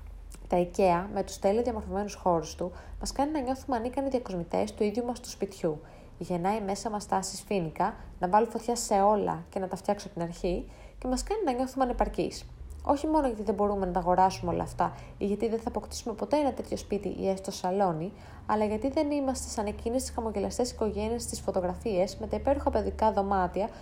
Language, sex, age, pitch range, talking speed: Greek, female, 20-39, 180-245 Hz, 205 wpm